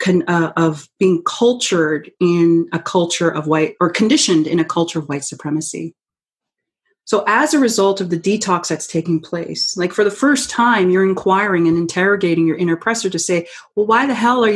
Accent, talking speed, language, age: American, 190 wpm, English, 30-49